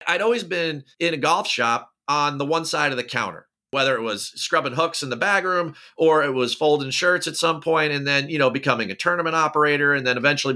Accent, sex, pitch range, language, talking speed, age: American, male, 125-155 Hz, English, 240 wpm, 40-59